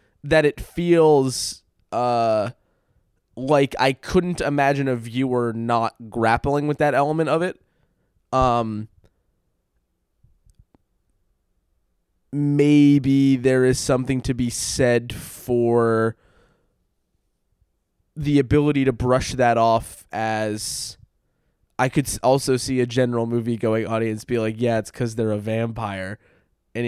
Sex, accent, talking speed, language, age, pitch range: male, American, 110 wpm, English, 20-39, 115-140 Hz